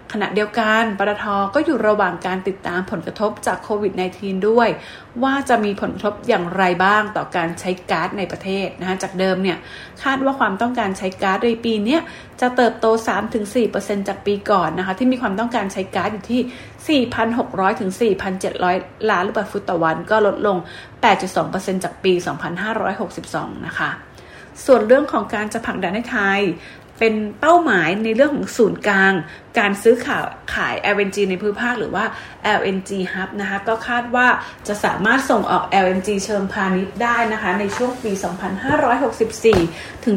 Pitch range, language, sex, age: 190-230 Hz, English, female, 30-49